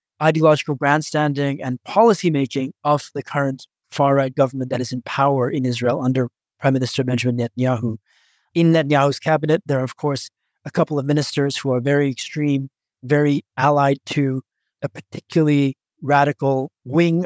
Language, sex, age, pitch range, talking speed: English, male, 30-49, 130-155 Hz, 150 wpm